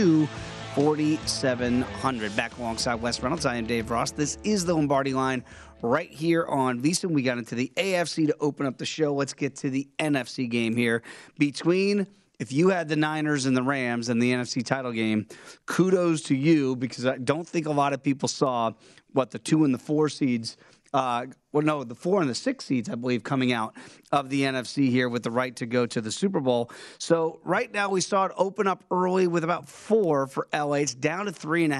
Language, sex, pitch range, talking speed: English, male, 125-160 Hz, 215 wpm